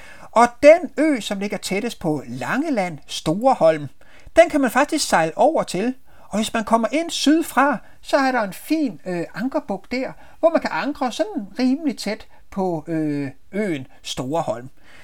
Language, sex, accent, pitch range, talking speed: Danish, male, native, 175-255 Hz, 165 wpm